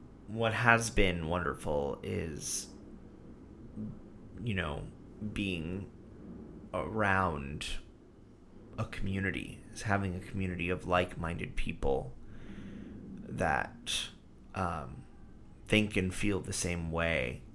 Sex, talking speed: male, 90 wpm